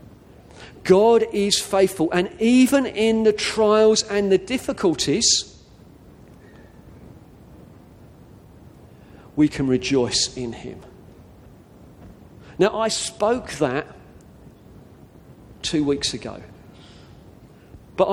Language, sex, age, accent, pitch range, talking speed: English, male, 40-59, British, 135-200 Hz, 80 wpm